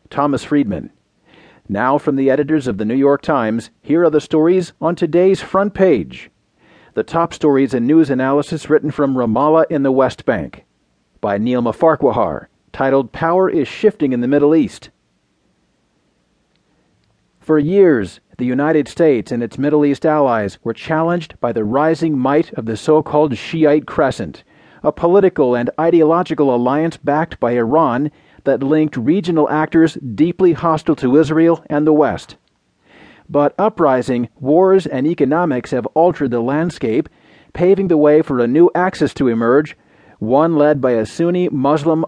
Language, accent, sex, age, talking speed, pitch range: English, American, male, 40-59, 150 wpm, 130-160 Hz